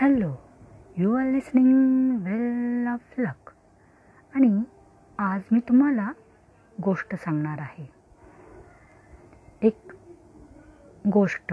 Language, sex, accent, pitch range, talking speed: Marathi, female, native, 180-245 Hz, 85 wpm